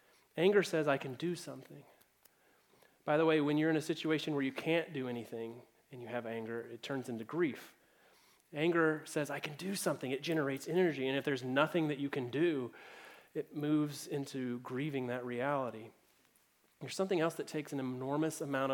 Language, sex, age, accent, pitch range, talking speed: English, male, 30-49, American, 135-165 Hz, 185 wpm